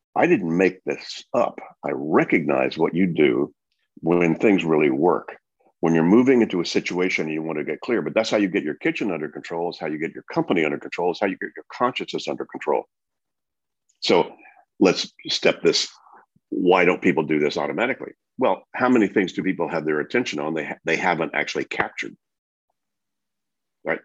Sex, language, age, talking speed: male, English, 50-69, 190 wpm